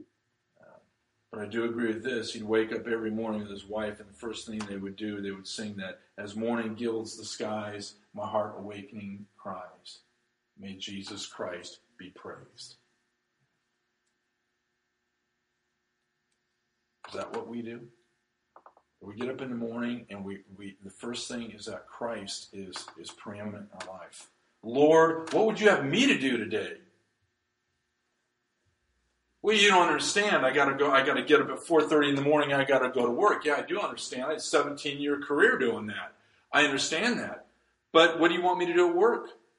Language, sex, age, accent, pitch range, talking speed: English, male, 50-69, American, 105-145 Hz, 180 wpm